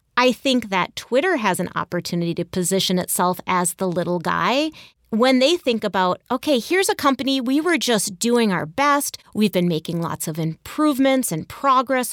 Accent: American